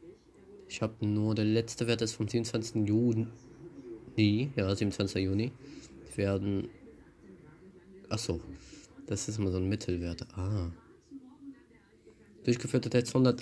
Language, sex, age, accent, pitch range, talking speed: German, male, 20-39, German, 105-125 Hz, 110 wpm